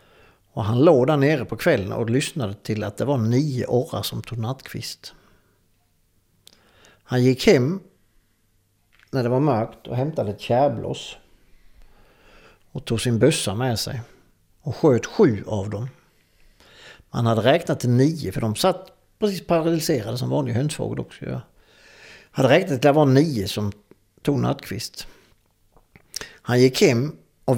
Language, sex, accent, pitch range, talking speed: Swedish, male, Norwegian, 110-140 Hz, 150 wpm